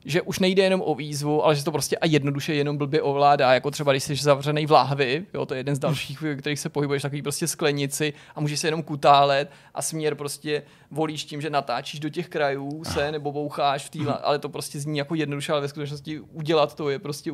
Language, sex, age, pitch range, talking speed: Czech, male, 30-49, 145-155 Hz, 225 wpm